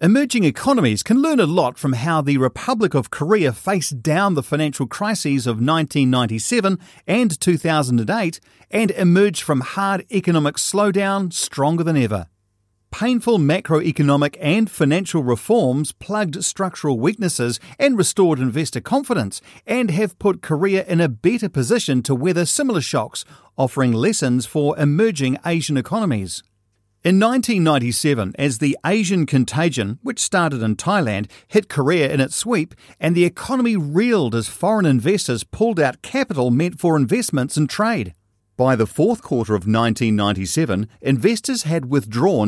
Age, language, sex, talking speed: 40-59, English, male, 140 wpm